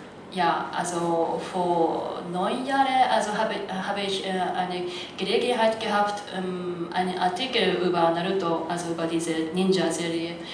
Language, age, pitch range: German, 30-49, 170-195 Hz